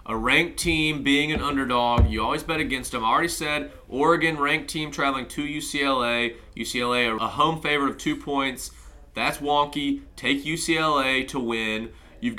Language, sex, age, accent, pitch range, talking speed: English, male, 30-49, American, 125-155 Hz, 165 wpm